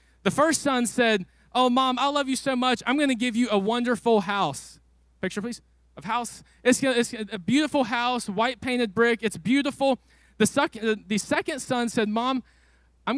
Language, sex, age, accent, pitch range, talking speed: English, male, 20-39, American, 190-255 Hz, 185 wpm